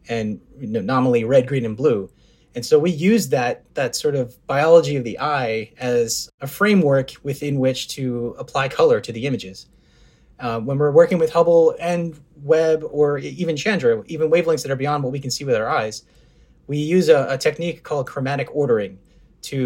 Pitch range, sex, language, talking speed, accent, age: 120-175 Hz, male, English, 185 wpm, American, 20-39